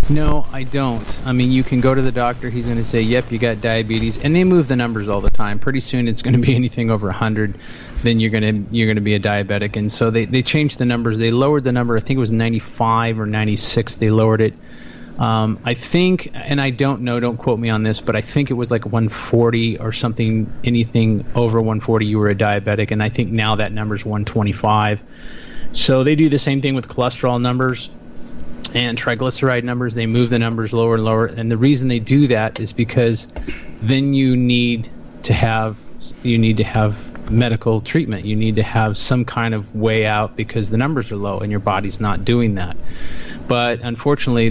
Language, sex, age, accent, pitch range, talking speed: English, male, 30-49, American, 110-125 Hz, 220 wpm